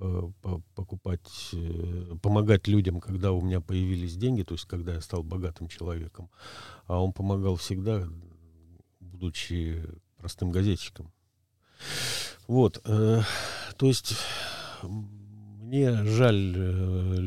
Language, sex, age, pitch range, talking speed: Russian, male, 50-69, 90-105 Hz, 95 wpm